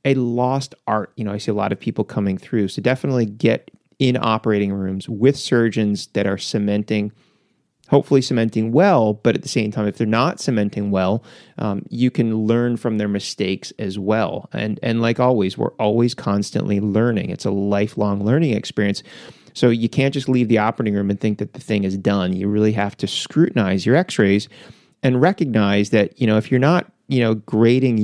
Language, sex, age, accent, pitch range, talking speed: English, male, 30-49, American, 100-125 Hz, 195 wpm